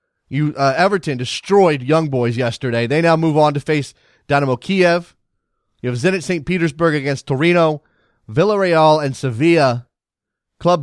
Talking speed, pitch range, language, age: 145 wpm, 135-170 Hz, English, 30-49